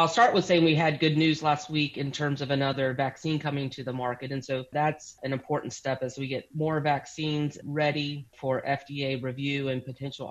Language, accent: English, American